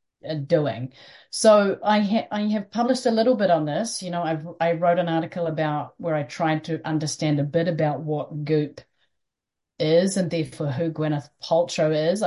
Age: 40-59